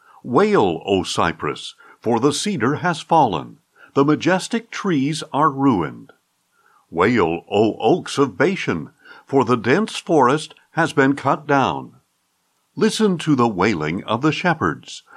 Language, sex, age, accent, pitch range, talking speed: English, male, 60-79, American, 120-165 Hz, 130 wpm